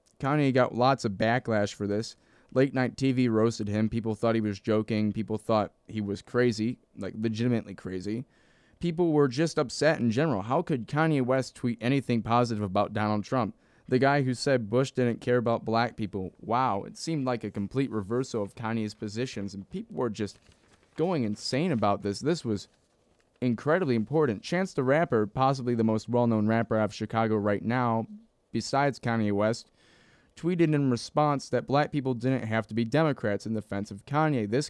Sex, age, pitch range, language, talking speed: male, 20-39, 110-140 Hz, English, 180 wpm